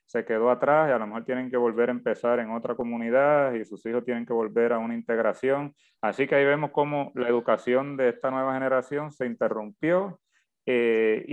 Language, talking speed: Spanish, 200 wpm